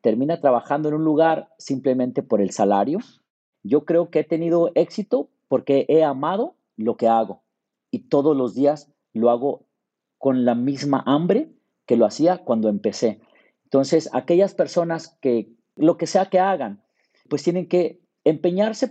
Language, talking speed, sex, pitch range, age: Spanish, 155 wpm, male, 135-185 Hz, 40-59